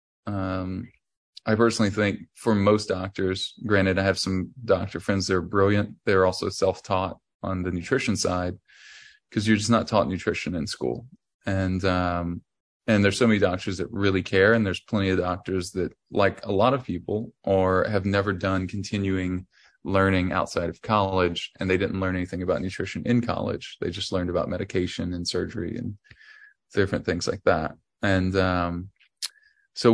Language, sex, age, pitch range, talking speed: English, male, 20-39, 95-105 Hz, 170 wpm